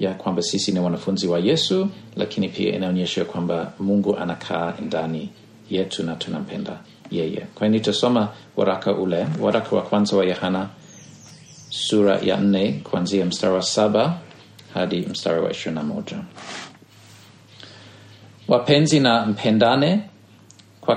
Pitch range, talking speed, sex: 100-135 Hz, 115 wpm, male